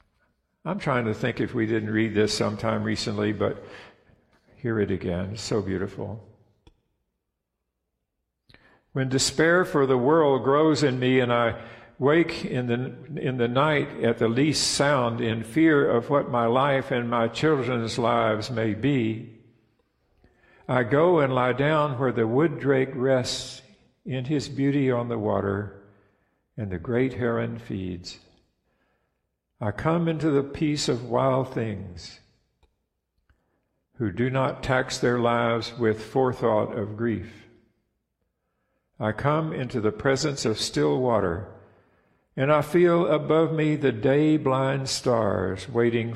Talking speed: 140 wpm